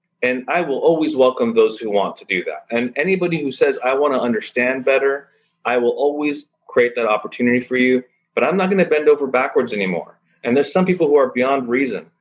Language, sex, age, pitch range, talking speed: English, male, 30-49, 120-185 Hz, 220 wpm